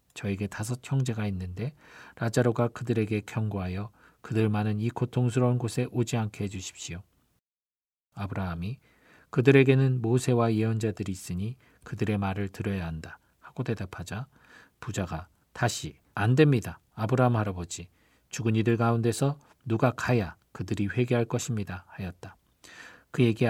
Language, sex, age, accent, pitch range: Korean, male, 40-59, native, 100-125 Hz